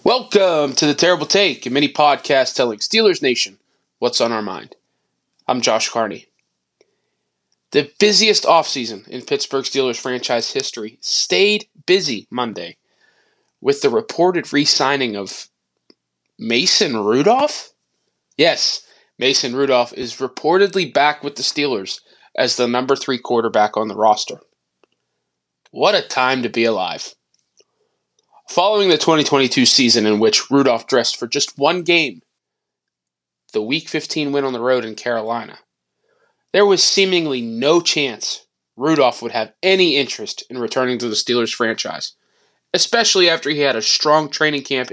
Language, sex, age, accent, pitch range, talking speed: English, male, 20-39, American, 115-180 Hz, 140 wpm